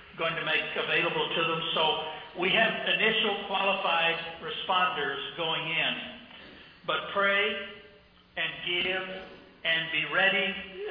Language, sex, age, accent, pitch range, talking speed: English, male, 60-79, American, 155-185 Hz, 120 wpm